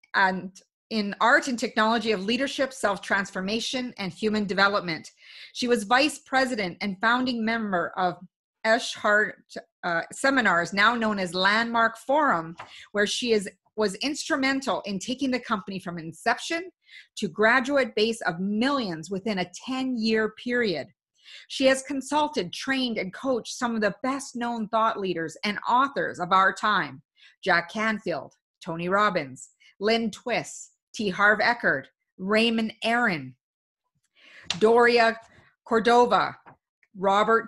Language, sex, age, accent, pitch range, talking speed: English, female, 30-49, American, 185-245 Hz, 125 wpm